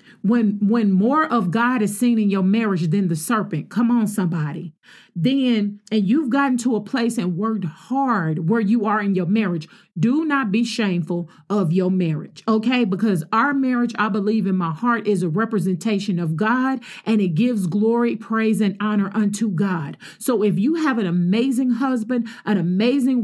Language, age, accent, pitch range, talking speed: English, 40-59, American, 205-260 Hz, 185 wpm